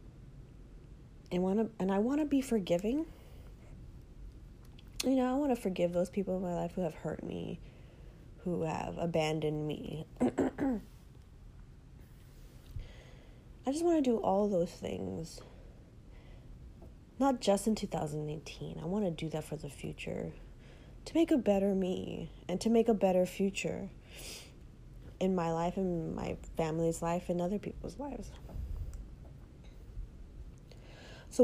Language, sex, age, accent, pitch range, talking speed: English, female, 30-49, American, 165-225 Hz, 135 wpm